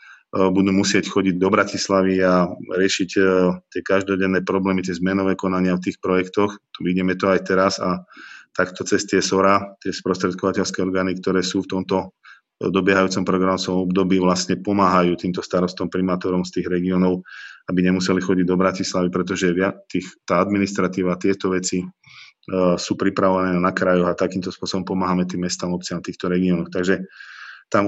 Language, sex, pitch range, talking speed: Slovak, male, 90-95 Hz, 150 wpm